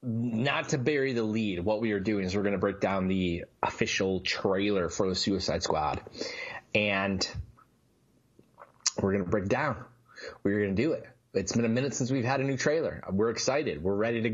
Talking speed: 200 wpm